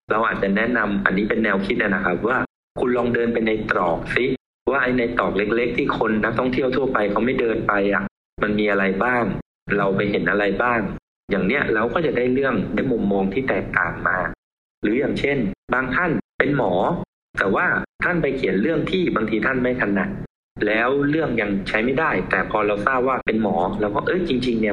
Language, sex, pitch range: Thai, male, 105-145 Hz